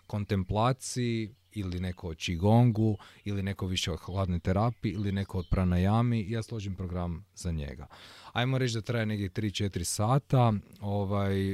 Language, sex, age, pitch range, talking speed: Croatian, male, 30-49, 90-110 Hz, 140 wpm